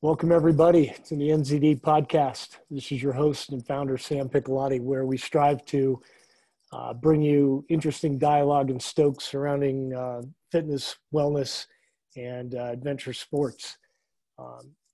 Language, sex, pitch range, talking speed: English, male, 135-160 Hz, 135 wpm